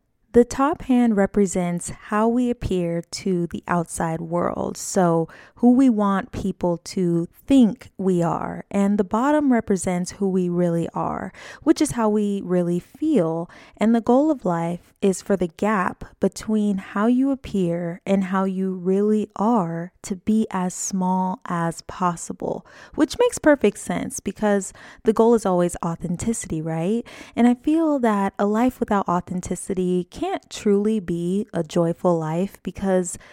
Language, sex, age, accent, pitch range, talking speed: English, female, 20-39, American, 180-230 Hz, 155 wpm